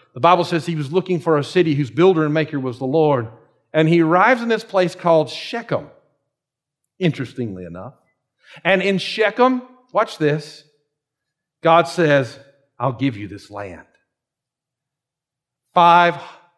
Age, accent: 50-69, American